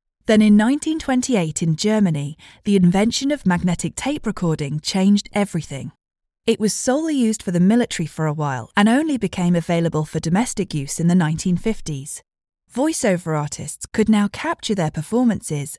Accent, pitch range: British, 160-225 Hz